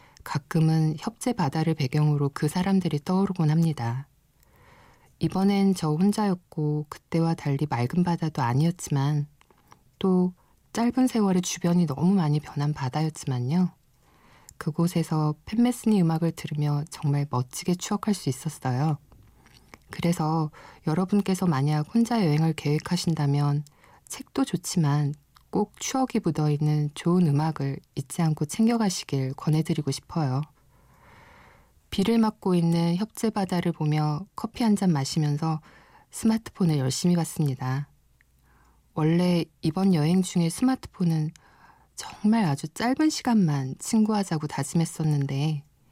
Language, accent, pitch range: Korean, native, 145-180 Hz